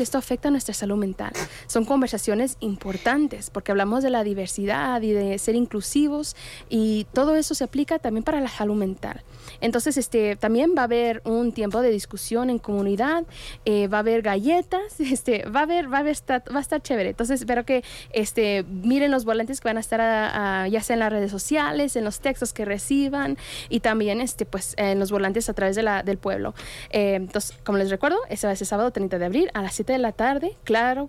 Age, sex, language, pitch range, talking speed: 20-39, female, English, 210-280 Hz, 220 wpm